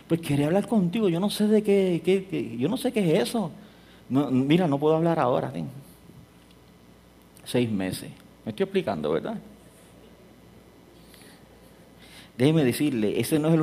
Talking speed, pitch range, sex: 150 wpm, 110-155 Hz, male